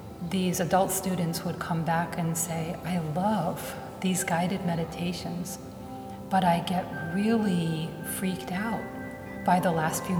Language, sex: English, female